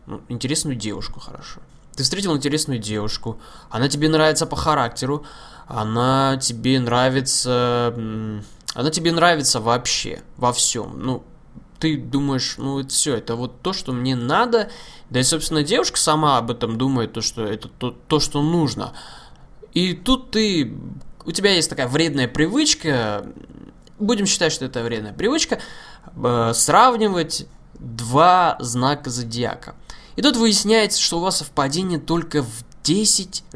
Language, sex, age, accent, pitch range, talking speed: Russian, male, 20-39, native, 120-160 Hz, 135 wpm